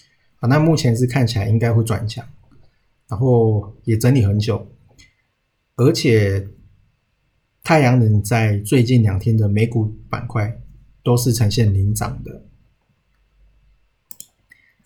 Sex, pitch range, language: male, 105-130 Hz, Chinese